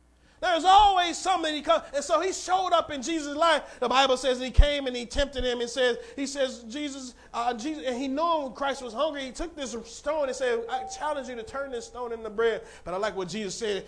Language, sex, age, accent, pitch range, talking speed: English, male, 30-49, American, 165-275 Hz, 240 wpm